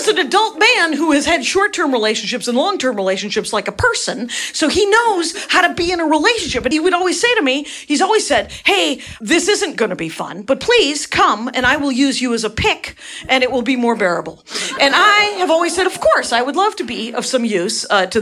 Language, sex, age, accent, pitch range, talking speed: English, female, 40-59, American, 240-360 Hz, 245 wpm